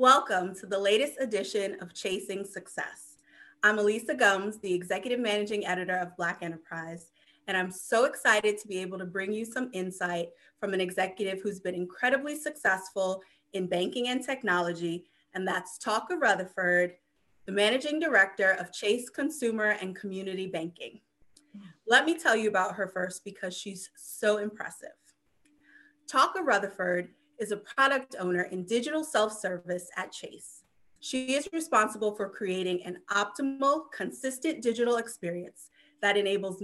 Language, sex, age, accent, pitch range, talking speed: English, female, 30-49, American, 185-250 Hz, 145 wpm